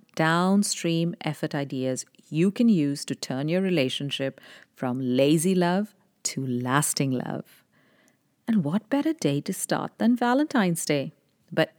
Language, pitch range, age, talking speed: English, 145-195 Hz, 50-69, 130 wpm